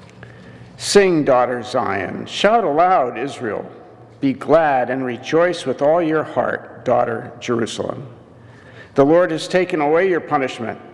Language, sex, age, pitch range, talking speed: English, male, 50-69, 120-150 Hz, 125 wpm